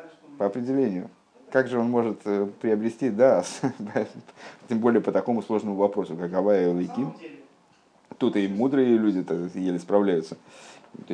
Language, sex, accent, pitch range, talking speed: Russian, male, native, 105-140 Hz, 135 wpm